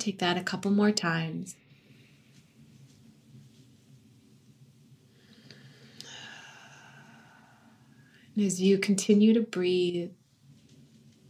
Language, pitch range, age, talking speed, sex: English, 165-190 Hz, 20-39, 60 wpm, female